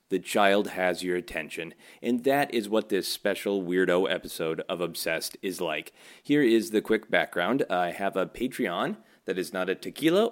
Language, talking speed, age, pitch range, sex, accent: English, 180 wpm, 30-49, 95-140 Hz, male, American